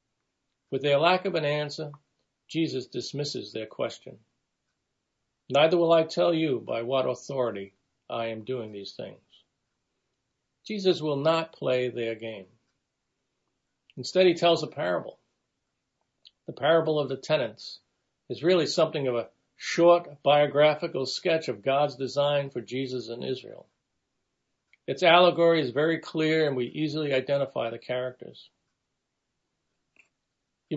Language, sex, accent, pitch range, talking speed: English, male, American, 130-160 Hz, 130 wpm